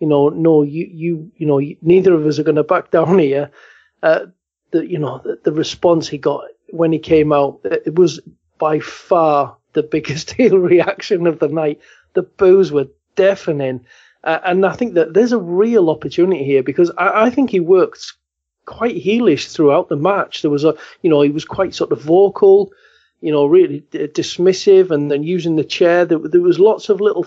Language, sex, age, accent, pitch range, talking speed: English, male, 40-59, British, 145-190 Hz, 200 wpm